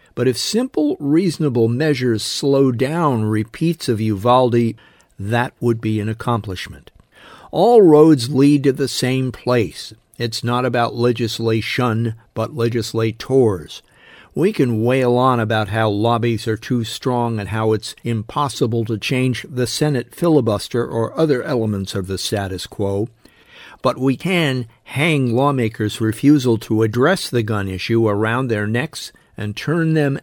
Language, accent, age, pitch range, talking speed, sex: English, American, 50-69, 110-130 Hz, 140 wpm, male